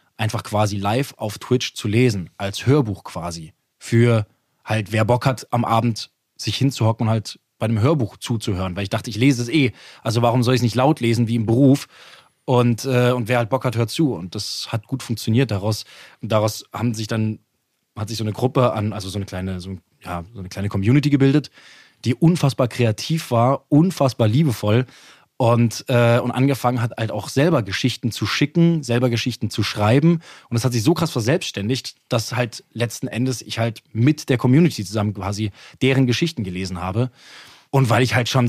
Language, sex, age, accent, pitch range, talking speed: German, male, 20-39, German, 110-130 Hz, 200 wpm